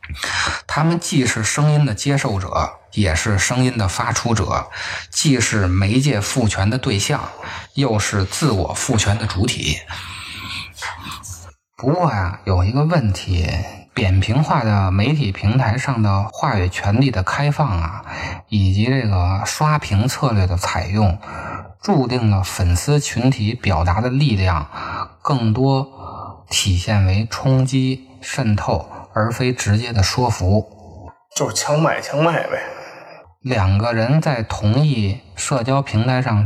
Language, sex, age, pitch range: Chinese, male, 20-39, 95-130 Hz